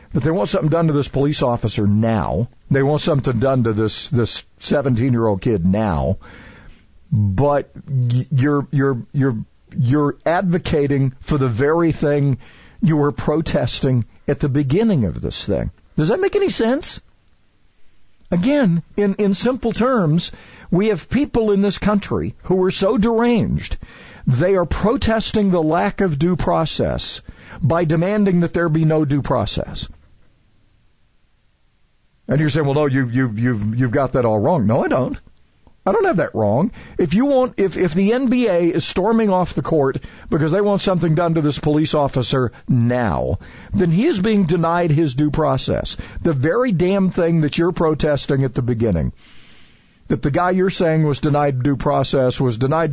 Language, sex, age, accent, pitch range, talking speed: English, male, 50-69, American, 125-180 Hz, 165 wpm